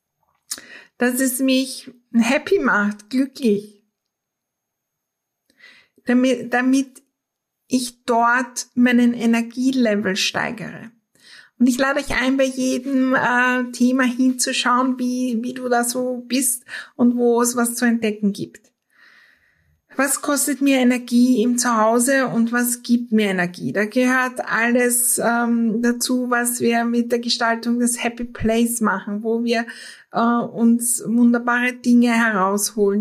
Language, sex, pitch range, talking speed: German, female, 220-250 Hz, 125 wpm